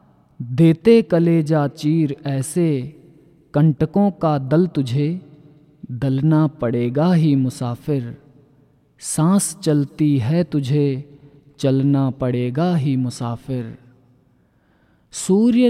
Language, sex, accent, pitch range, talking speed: Hindi, male, native, 135-165 Hz, 80 wpm